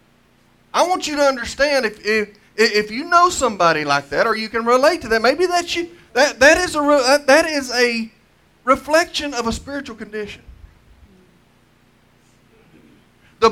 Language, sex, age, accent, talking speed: English, male, 40-59, American, 155 wpm